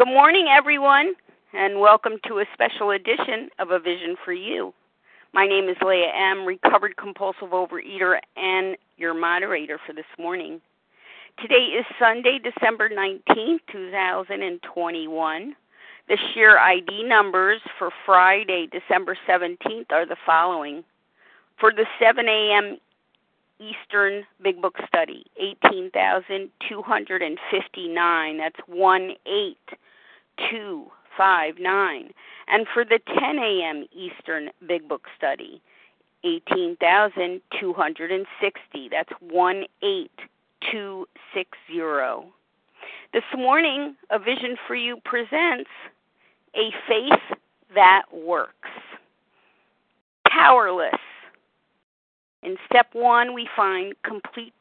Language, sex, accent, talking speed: English, female, American, 110 wpm